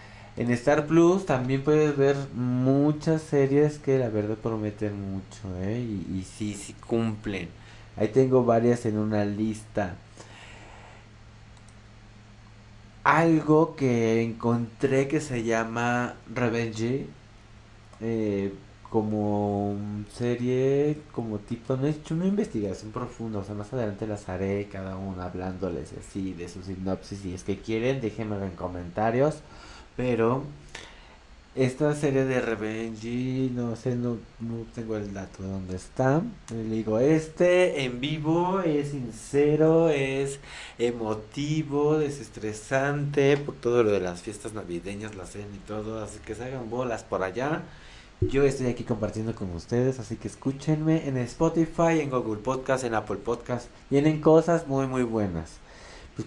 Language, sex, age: Spanish, male, 30-49